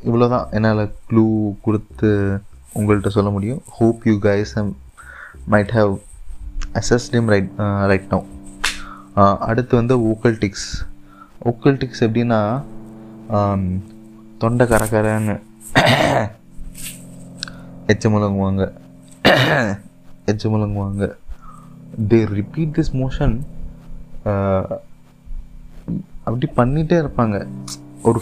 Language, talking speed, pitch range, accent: Tamil, 70 wpm, 100-125 Hz, native